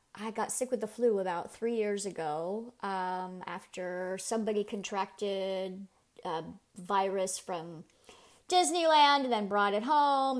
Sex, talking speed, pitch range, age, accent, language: female, 135 wpm, 195-245 Hz, 30-49, American, English